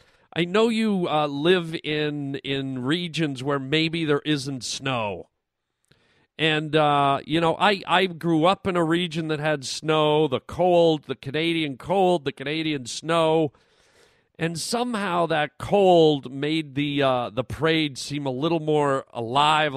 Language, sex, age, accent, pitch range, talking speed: English, male, 40-59, American, 140-170 Hz, 150 wpm